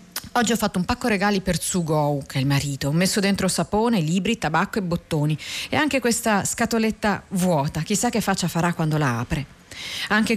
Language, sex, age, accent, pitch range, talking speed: Italian, female, 30-49, native, 165-220 Hz, 190 wpm